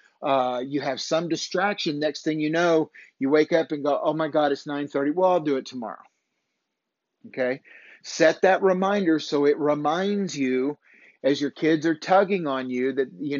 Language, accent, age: English, American, 50-69